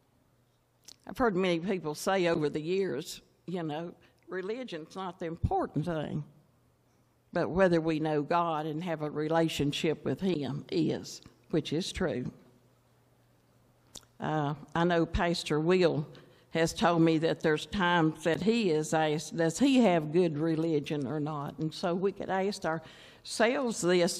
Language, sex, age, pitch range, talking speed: English, female, 60-79, 155-190 Hz, 145 wpm